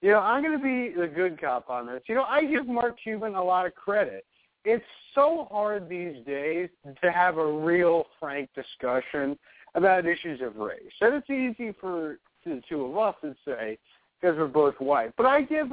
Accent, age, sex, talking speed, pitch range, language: American, 50-69, male, 200 wpm, 145-225 Hz, English